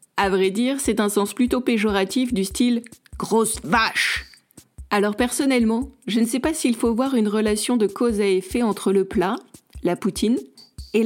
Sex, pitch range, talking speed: female, 200-245 Hz, 180 wpm